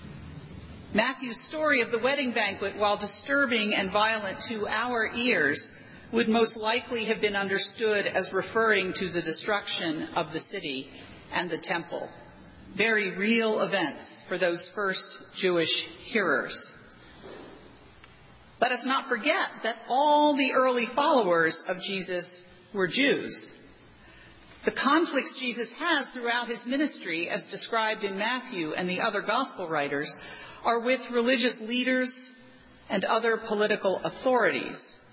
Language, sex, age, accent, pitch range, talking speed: English, female, 40-59, American, 185-255 Hz, 130 wpm